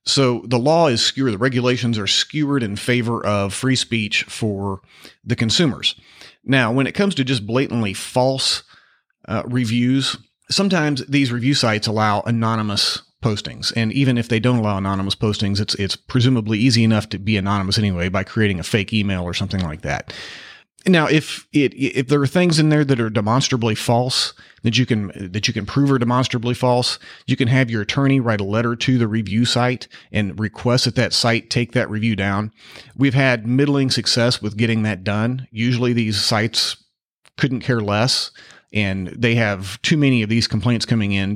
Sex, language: male, English